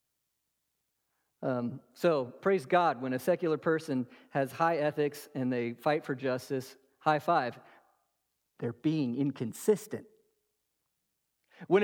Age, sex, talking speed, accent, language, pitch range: 40-59, male, 110 wpm, American, English, 135-215 Hz